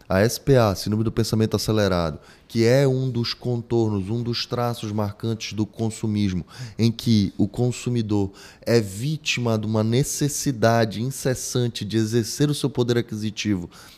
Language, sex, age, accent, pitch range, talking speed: Portuguese, male, 20-39, Brazilian, 105-130 Hz, 140 wpm